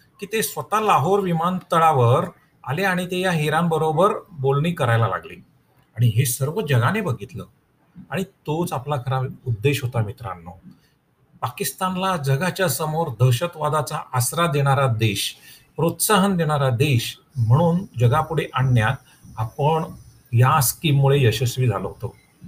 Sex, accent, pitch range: male, native, 120-160 Hz